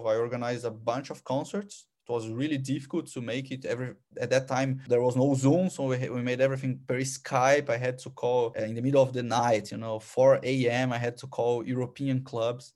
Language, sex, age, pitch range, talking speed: English, male, 20-39, 120-140 Hz, 230 wpm